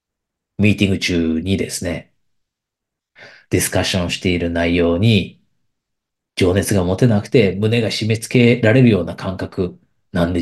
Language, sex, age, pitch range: Japanese, male, 40-59, 90-120 Hz